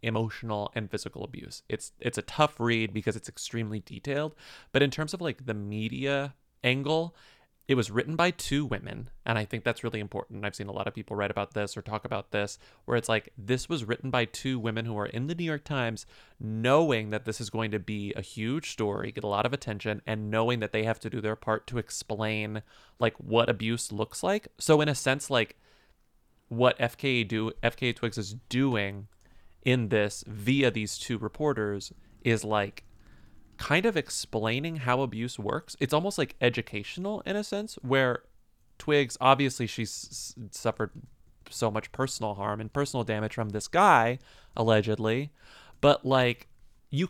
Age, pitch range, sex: 30-49, 110-135 Hz, male